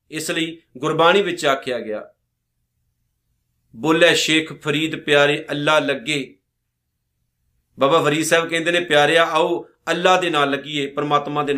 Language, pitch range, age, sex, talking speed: Punjabi, 140-185 Hz, 40-59, male, 130 wpm